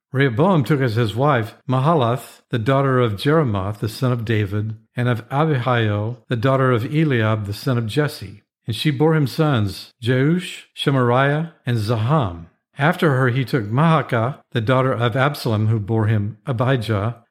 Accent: American